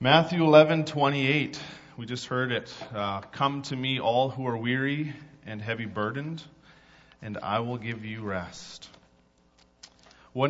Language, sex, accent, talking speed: English, male, American, 155 wpm